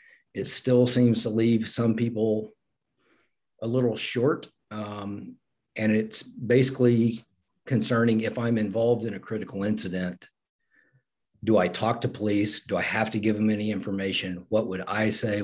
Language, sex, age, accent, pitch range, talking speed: English, male, 50-69, American, 100-115 Hz, 150 wpm